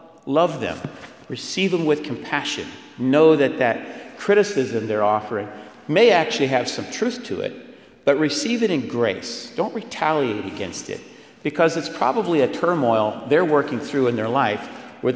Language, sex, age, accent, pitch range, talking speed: English, male, 50-69, American, 110-150 Hz, 160 wpm